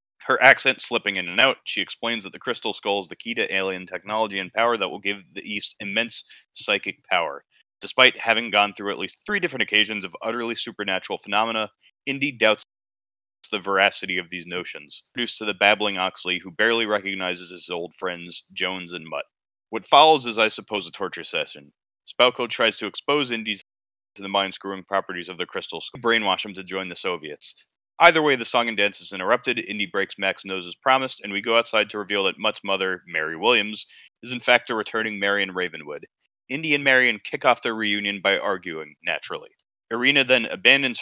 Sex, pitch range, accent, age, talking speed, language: male, 95-115 Hz, American, 30-49, 195 wpm, English